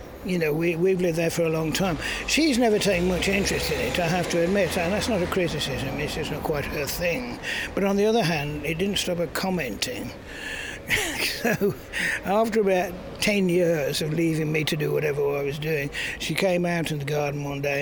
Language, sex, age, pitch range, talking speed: English, male, 60-79, 150-190 Hz, 215 wpm